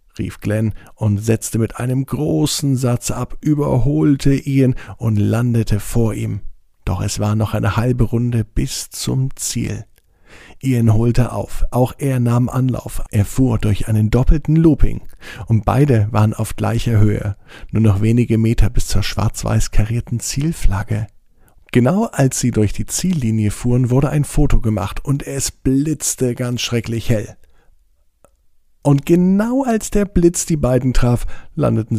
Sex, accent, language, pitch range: male, German, German, 105-125 Hz